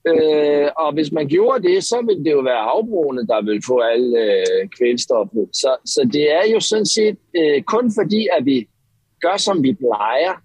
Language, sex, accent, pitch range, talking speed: Danish, male, native, 125-165 Hz, 195 wpm